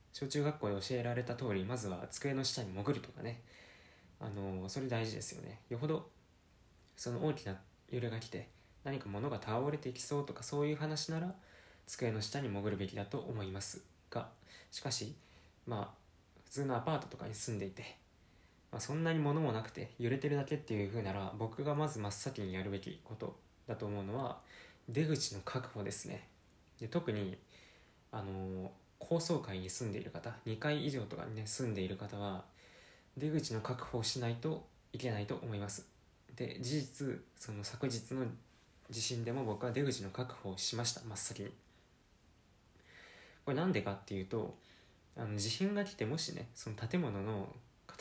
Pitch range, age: 100-135 Hz, 20-39